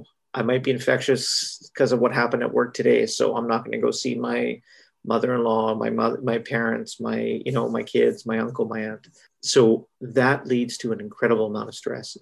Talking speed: 205 wpm